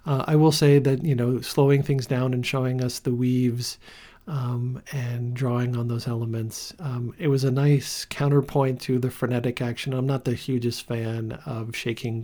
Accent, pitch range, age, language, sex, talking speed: American, 110-130 Hz, 50-69, English, male, 185 wpm